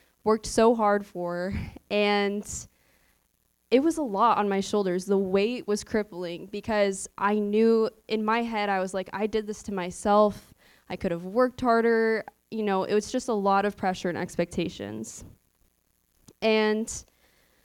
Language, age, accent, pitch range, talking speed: English, 10-29, American, 180-210 Hz, 160 wpm